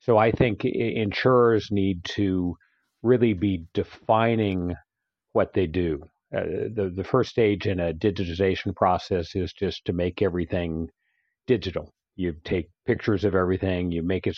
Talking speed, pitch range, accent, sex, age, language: 145 wpm, 90-105 Hz, American, male, 50-69, English